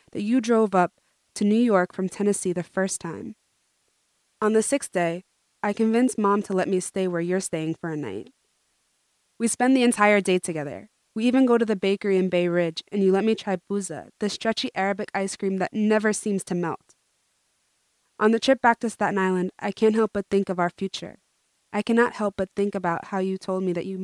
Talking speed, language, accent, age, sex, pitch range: 215 wpm, English, American, 20-39, female, 180-210 Hz